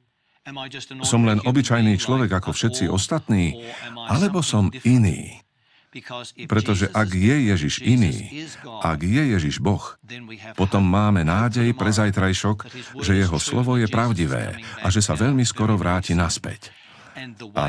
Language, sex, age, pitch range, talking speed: Slovak, male, 50-69, 90-115 Hz, 125 wpm